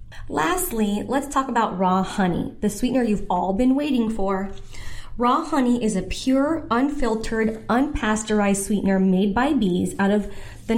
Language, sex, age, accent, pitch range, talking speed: English, female, 20-39, American, 195-240 Hz, 150 wpm